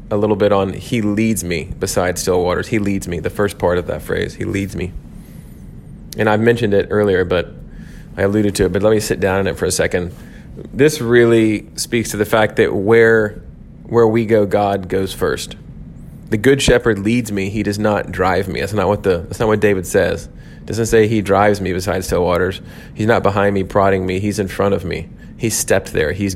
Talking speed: 225 wpm